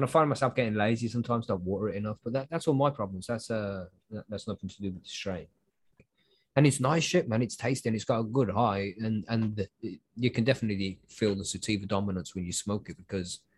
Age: 20-39